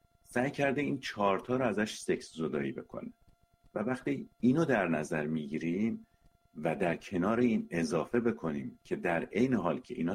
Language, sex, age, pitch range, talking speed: Persian, male, 50-69, 85-120 Hz, 160 wpm